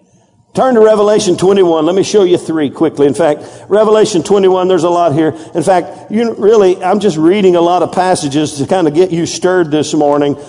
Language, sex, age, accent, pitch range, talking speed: English, male, 50-69, American, 165-205 Hz, 210 wpm